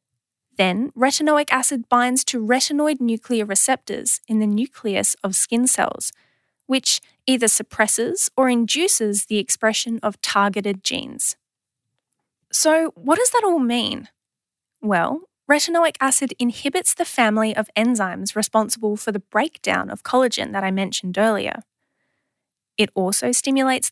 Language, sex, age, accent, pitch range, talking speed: English, female, 10-29, Australian, 215-275 Hz, 130 wpm